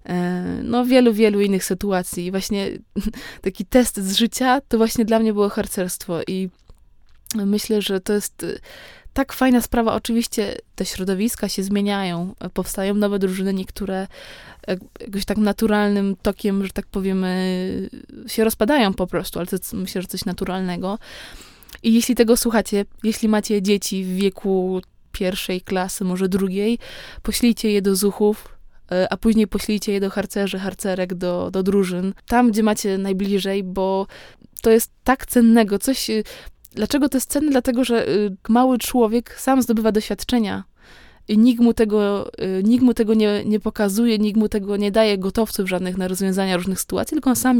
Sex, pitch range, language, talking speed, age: female, 195-225 Hz, Polish, 150 wpm, 20-39